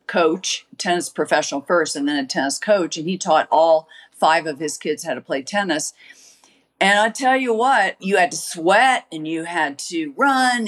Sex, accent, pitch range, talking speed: female, American, 165-255 Hz, 195 wpm